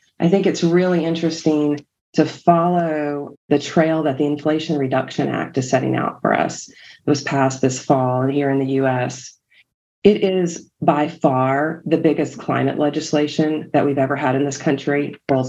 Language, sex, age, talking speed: English, female, 40-59, 170 wpm